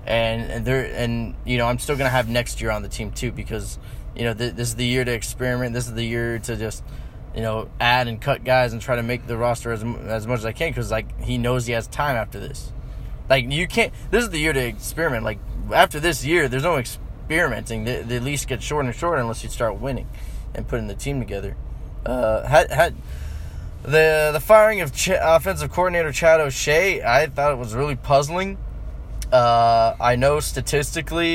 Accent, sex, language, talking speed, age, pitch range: American, male, English, 215 wpm, 10-29, 115-135 Hz